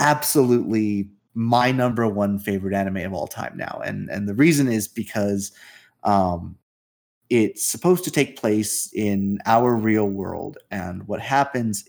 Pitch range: 100-115 Hz